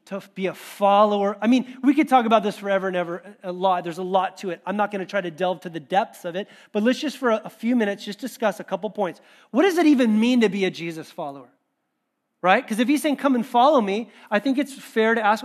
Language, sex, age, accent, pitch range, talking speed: English, male, 30-49, American, 185-250 Hz, 270 wpm